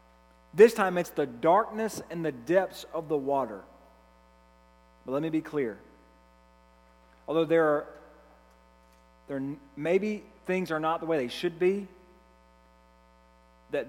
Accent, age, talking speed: American, 40-59, 125 wpm